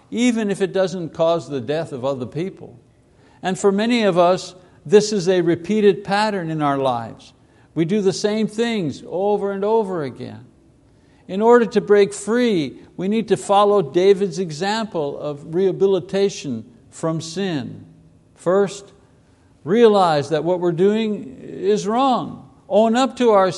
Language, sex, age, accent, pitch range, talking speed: English, male, 60-79, American, 160-215 Hz, 150 wpm